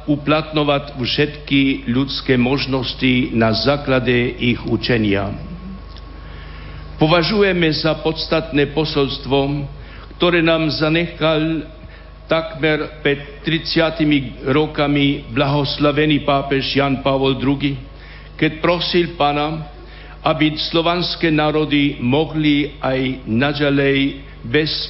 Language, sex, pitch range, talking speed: Slovak, male, 130-155 Hz, 80 wpm